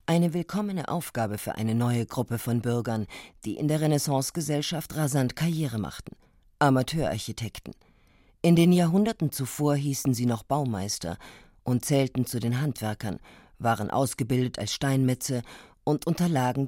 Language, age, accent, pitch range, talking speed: German, 50-69, German, 120-155 Hz, 130 wpm